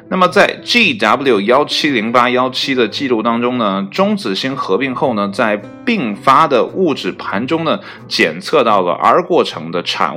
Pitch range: 110-170 Hz